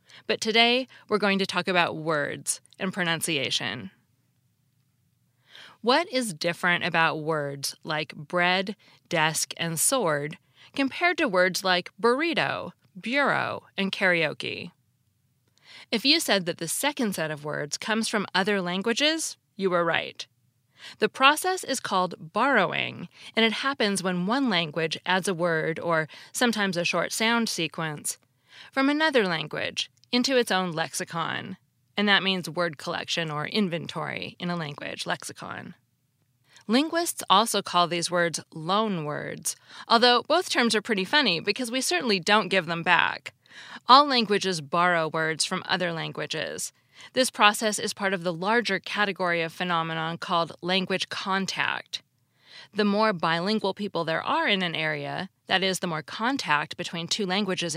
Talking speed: 145 wpm